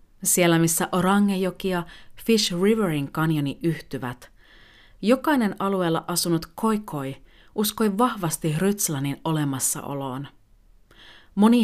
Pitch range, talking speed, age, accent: 140-205 Hz, 90 wpm, 40-59, native